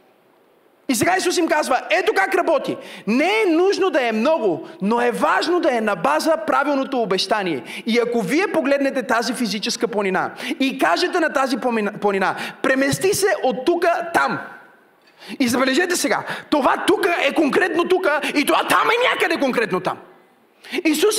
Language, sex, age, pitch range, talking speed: Bulgarian, male, 30-49, 220-305 Hz, 160 wpm